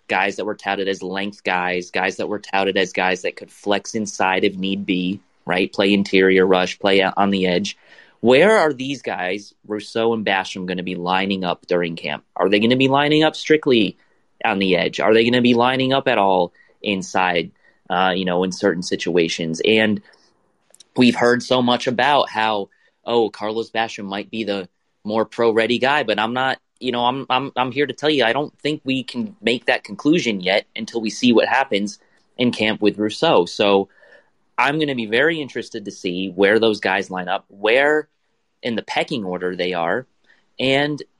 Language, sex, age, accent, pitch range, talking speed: English, male, 30-49, American, 95-125 Hz, 200 wpm